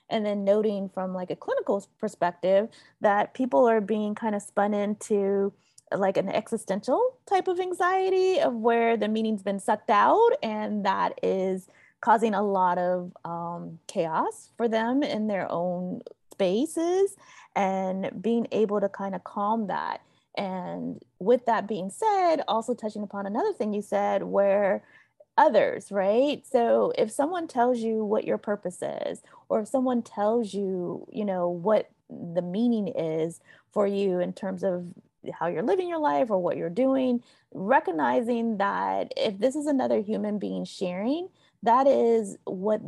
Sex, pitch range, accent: female, 190-245 Hz, American